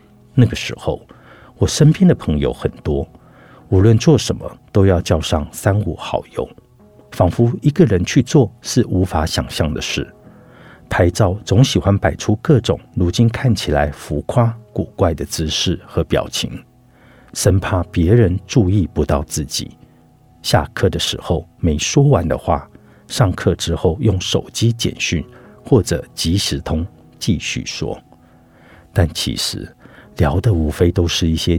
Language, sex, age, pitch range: Chinese, male, 60-79, 80-115 Hz